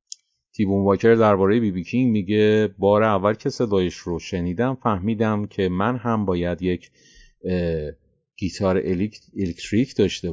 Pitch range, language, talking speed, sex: 85-105 Hz, Persian, 120 wpm, male